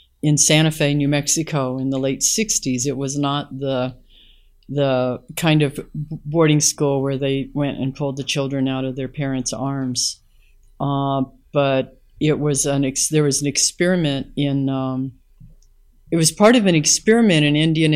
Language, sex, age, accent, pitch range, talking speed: English, female, 50-69, American, 135-155 Hz, 165 wpm